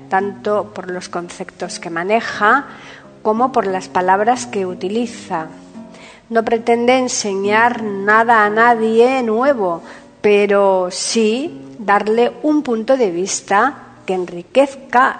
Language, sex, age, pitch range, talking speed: Spanish, female, 50-69, 190-250 Hz, 110 wpm